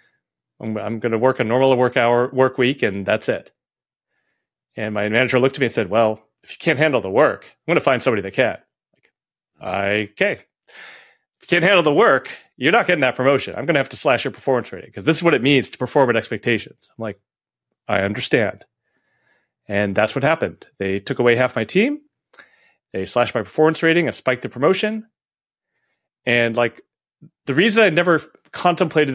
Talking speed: 200 wpm